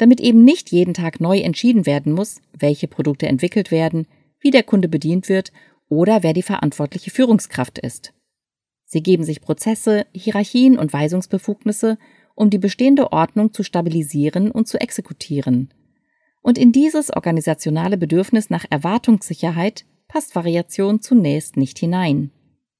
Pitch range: 160-225 Hz